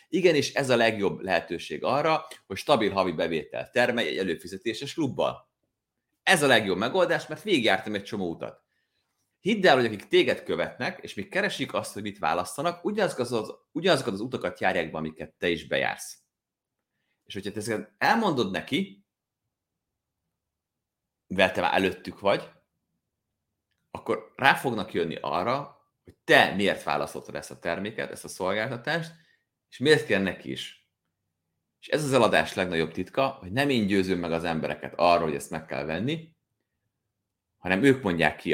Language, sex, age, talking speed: Hungarian, male, 30-49, 155 wpm